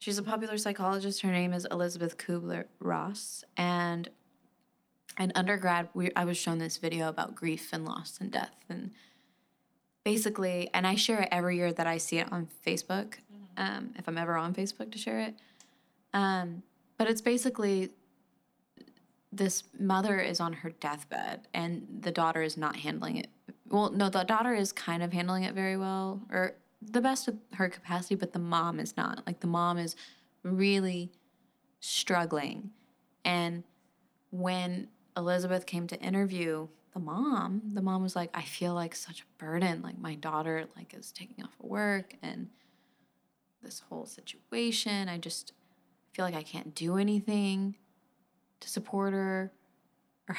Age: 20-39